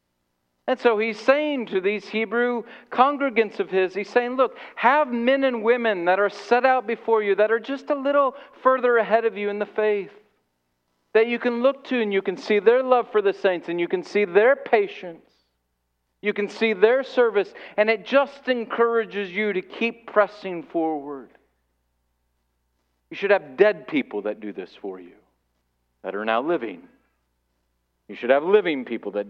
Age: 40-59